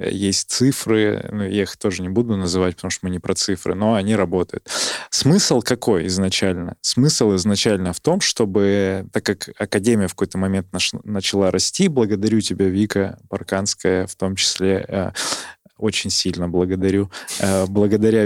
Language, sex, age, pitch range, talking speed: Russian, male, 20-39, 95-110 Hz, 155 wpm